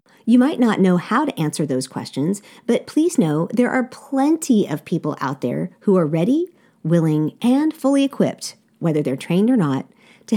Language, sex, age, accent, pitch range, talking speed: English, female, 40-59, American, 160-230 Hz, 185 wpm